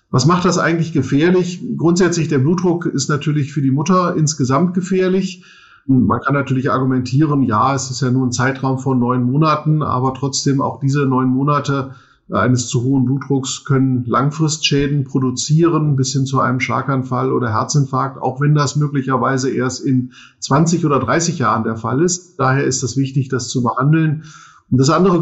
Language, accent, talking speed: German, German, 170 wpm